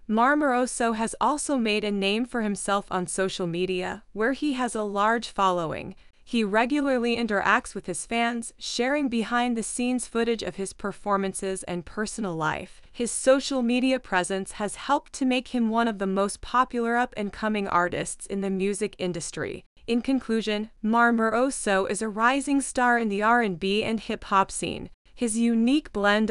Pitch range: 195-240 Hz